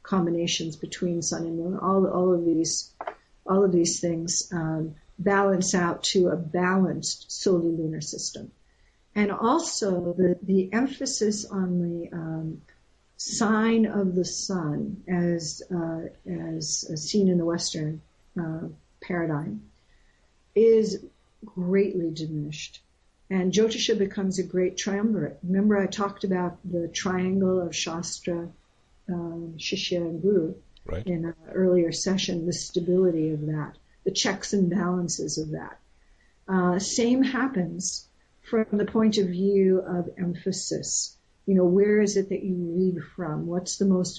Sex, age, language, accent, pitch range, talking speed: female, 60-79, English, American, 170-195 Hz, 135 wpm